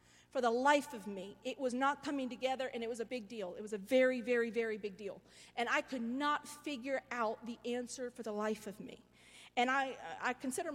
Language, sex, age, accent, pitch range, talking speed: English, female, 40-59, American, 245-315 Hz, 230 wpm